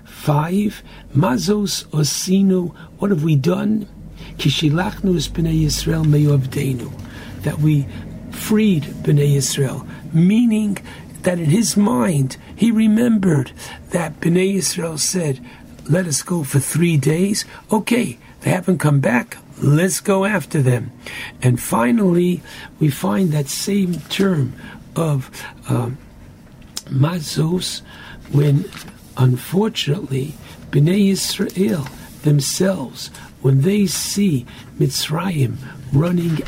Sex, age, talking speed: male, 60-79, 100 wpm